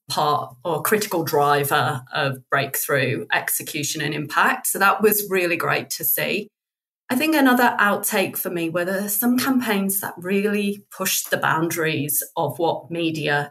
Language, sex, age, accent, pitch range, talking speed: English, female, 30-49, British, 160-205 Hz, 150 wpm